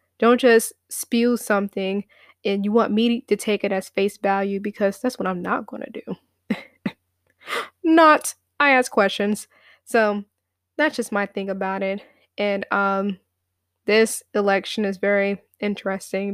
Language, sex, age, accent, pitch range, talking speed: English, female, 20-39, American, 195-225 Hz, 145 wpm